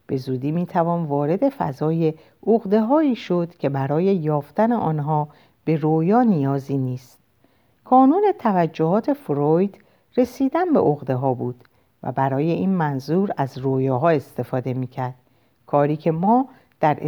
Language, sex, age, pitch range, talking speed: Persian, female, 50-69, 135-205 Hz, 130 wpm